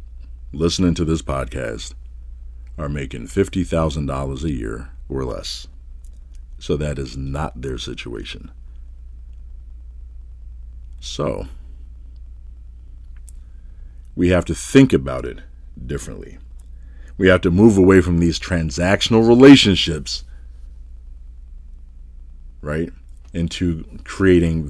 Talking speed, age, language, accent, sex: 90 wpm, 50-69, English, American, male